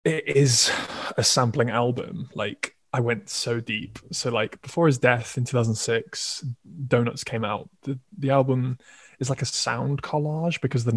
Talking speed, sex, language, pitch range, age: 170 wpm, male, English, 120-140 Hz, 20-39